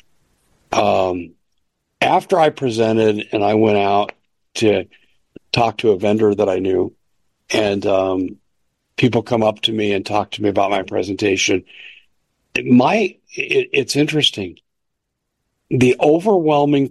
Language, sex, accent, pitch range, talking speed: English, male, American, 105-130 Hz, 125 wpm